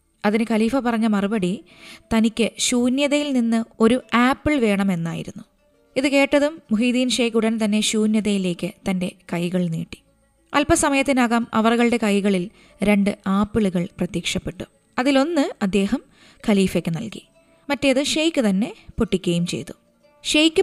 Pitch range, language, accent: 195-255 Hz, Malayalam, native